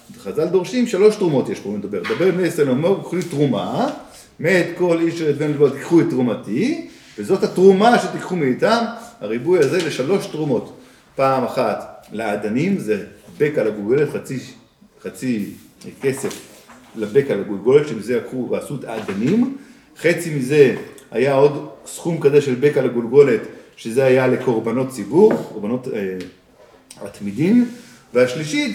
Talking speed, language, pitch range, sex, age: 135 wpm, Hebrew, 140-215 Hz, male, 40-59